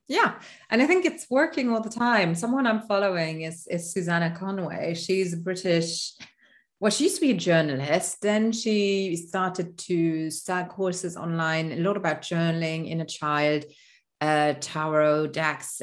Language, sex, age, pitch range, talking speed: English, female, 30-49, 155-200 Hz, 165 wpm